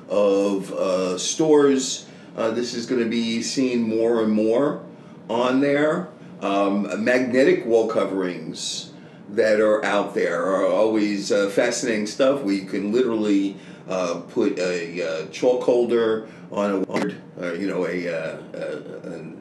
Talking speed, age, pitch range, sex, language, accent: 140 wpm, 50-69, 100-115 Hz, male, English, American